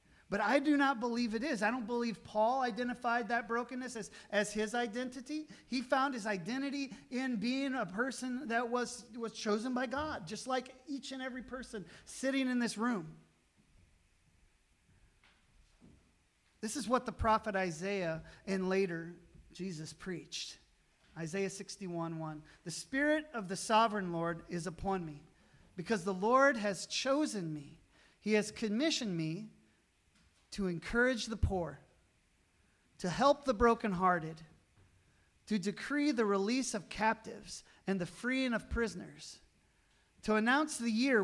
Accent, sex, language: American, male, English